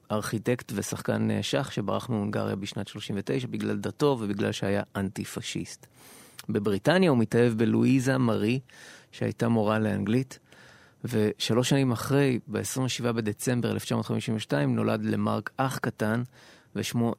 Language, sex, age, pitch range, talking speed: Hebrew, male, 30-49, 105-130 Hz, 110 wpm